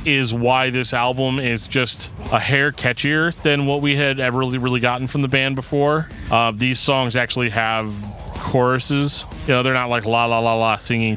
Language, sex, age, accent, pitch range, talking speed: English, male, 20-39, American, 105-125 Hz, 200 wpm